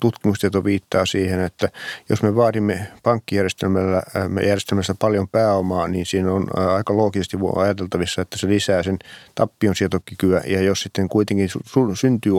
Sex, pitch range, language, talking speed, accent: male, 95-105 Hz, Finnish, 130 wpm, native